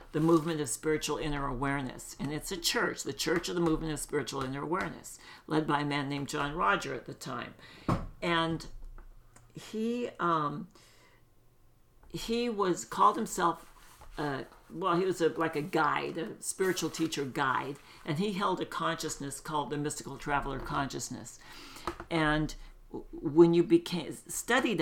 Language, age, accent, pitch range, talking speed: English, 60-79, American, 150-175 Hz, 150 wpm